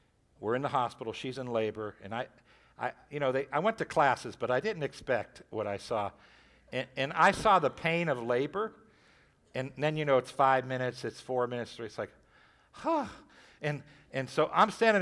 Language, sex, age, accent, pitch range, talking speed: English, male, 60-79, American, 125-190 Hz, 205 wpm